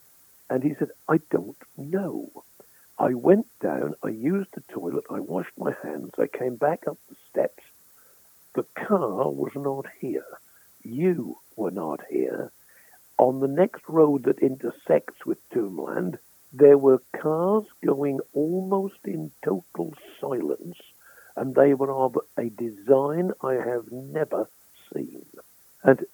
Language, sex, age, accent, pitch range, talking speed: English, male, 60-79, British, 130-195 Hz, 135 wpm